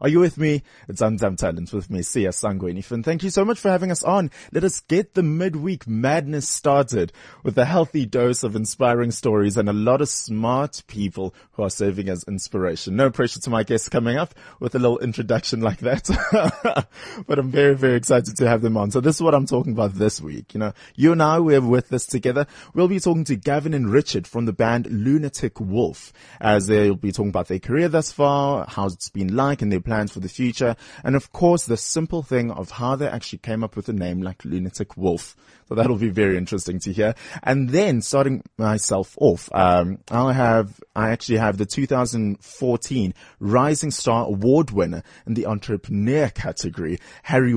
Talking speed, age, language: 205 wpm, 20-39, English